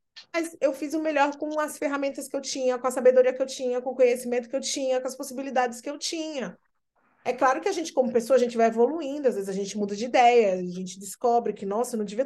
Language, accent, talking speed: Portuguese, Brazilian, 270 wpm